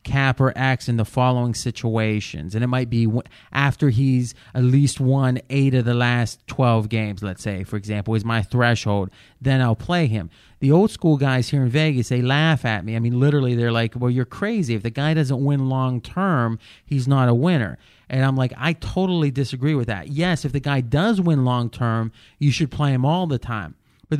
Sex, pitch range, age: male, 120-155 Hz, 30-49